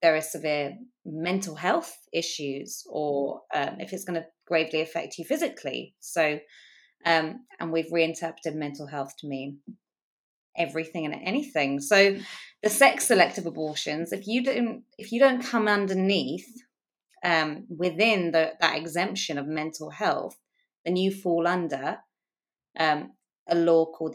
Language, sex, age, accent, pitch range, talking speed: English, female, 20-39, British, 160-200 Hz, 140 wpm